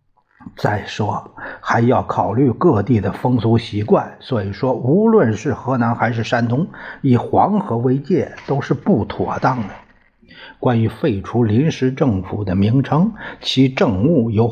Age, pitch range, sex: 60-79, 105-140 Hz, male